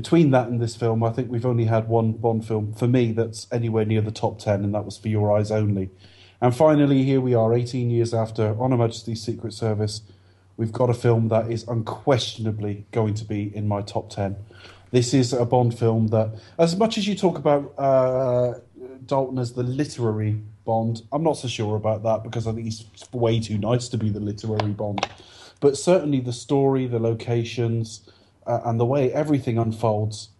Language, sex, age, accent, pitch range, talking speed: English, male, 30-49, British, 105-125 Hz, 200 wpm